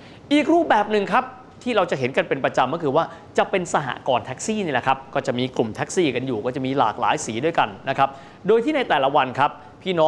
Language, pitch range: Thai, 135-200 Hz